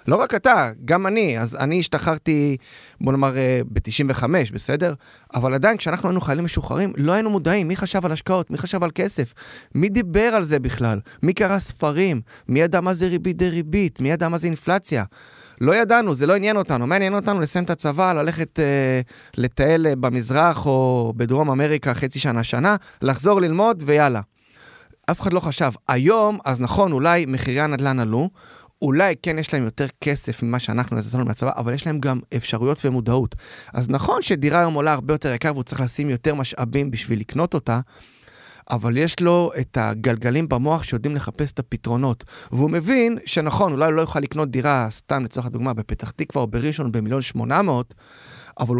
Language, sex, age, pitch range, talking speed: Hebrew, male, 30-49, 125-170 Hz, 175 wpm